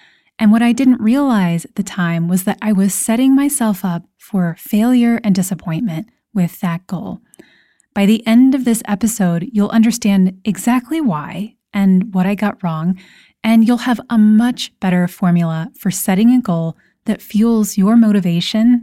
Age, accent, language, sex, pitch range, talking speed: 20-39, American, English, female, 185-235 Hz, 165 wpm